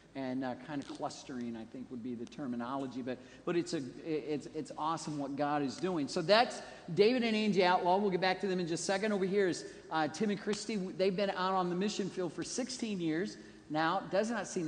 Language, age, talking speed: English, 50-69, 235 wpm